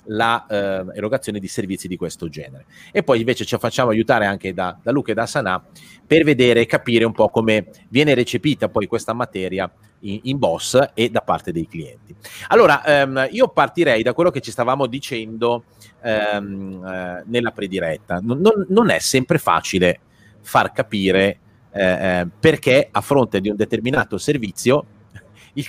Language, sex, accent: Italian, male, native